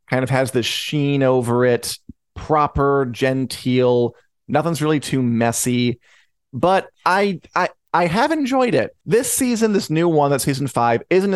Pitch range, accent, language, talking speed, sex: 115-140 Hz, American, English, 155 wpm, male